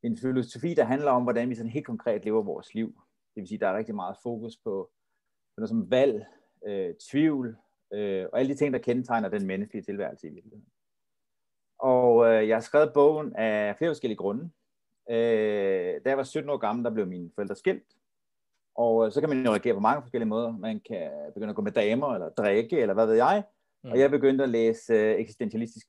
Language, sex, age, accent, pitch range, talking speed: Danish, male, 30-49, native, 110-145 Hz, 205 wpm